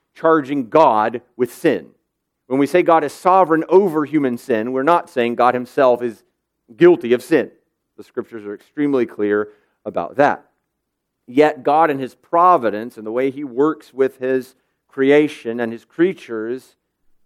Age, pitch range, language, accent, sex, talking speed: 40-59, 120-160 Hz, English, American, male, 155 wpm